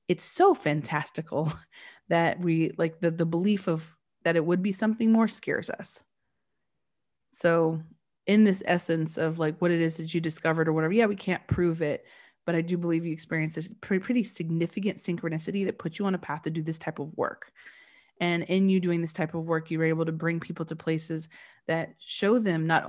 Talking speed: 210 wpm